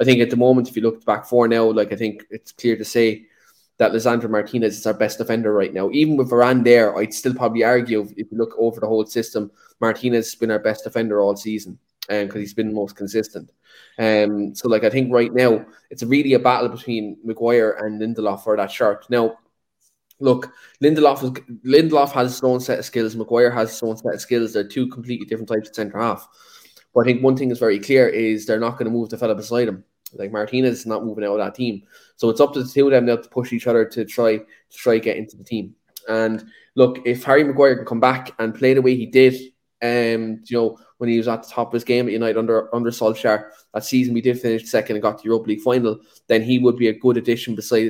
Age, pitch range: 20-39, 110-125 Hz